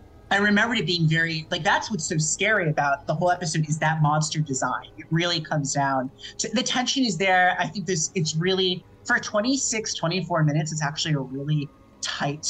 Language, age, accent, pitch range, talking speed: English, 30-49, American, 150-190 Hz, 190 wpm